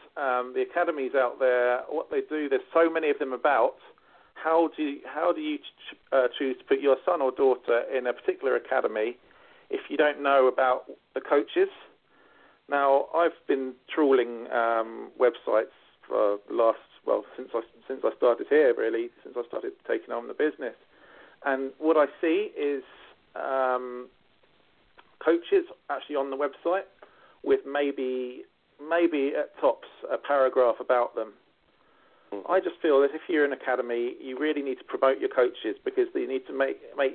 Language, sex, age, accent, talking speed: English, male, 40-59, British, 165 wpm